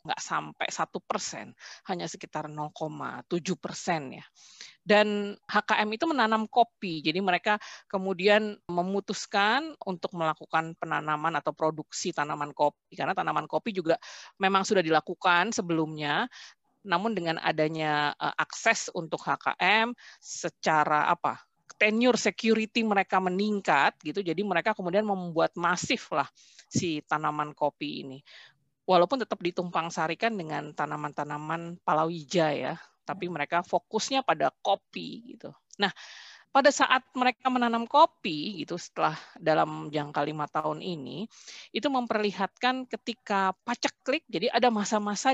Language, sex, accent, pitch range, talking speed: Indonesian, female, native, 160-220 Hz, 120 wpm